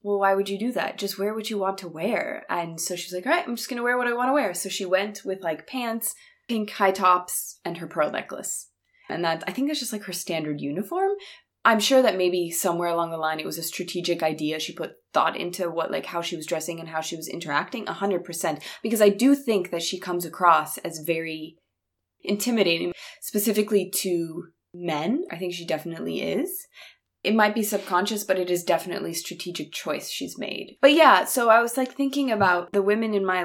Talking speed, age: 225 wpm, 20-39